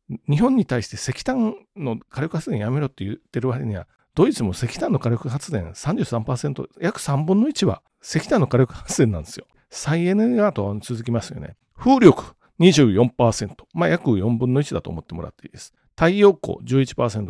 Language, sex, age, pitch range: Japanese, male, 40-59, 115-185 Hz